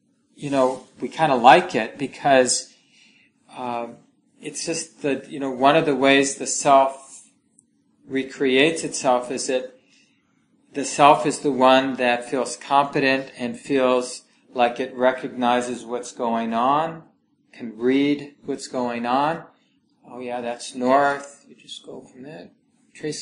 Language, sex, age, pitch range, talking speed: English, male, 40-59, 125-185 Hz, 140 wpm